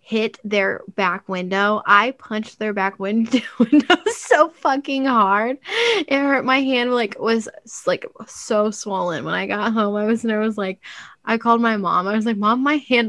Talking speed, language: 190 wpm, English